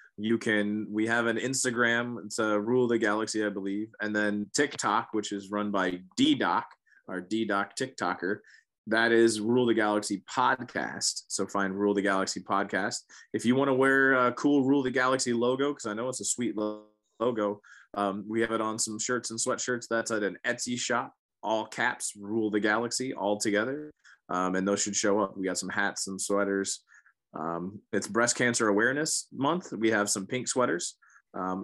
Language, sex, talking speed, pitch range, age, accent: English, male, 190 wpm, 100-125 Hz, 20-39, American